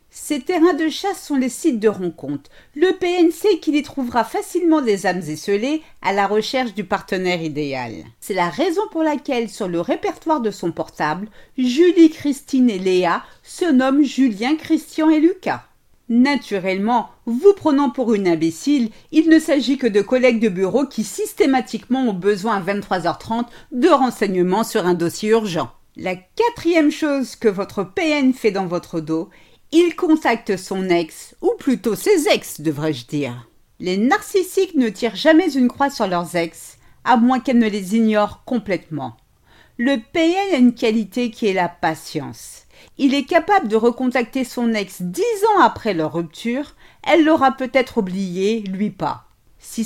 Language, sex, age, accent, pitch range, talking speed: French, female, 50-69, French, 190-290 Hz, 165 wpm